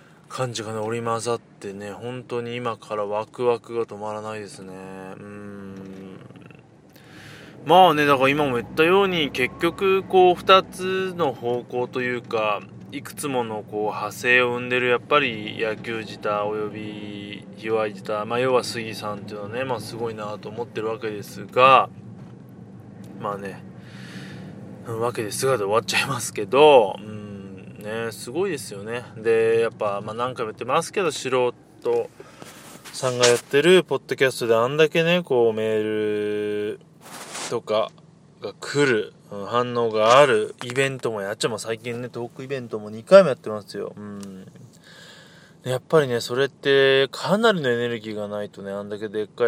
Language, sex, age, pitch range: Japanese, male, 20-39, 105-135 Hz